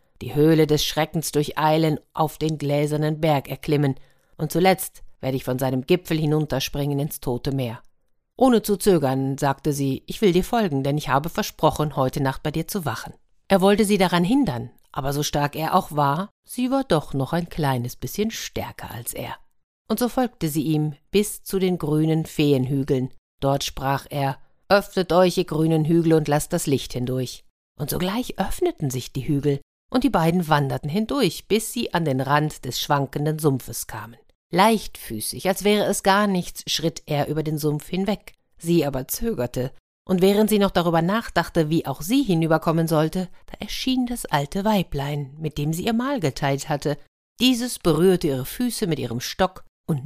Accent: German